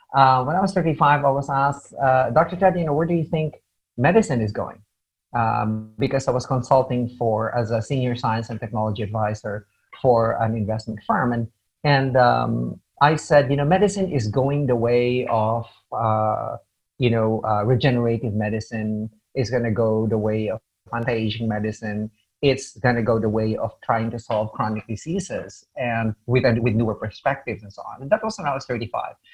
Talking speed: 190 wpm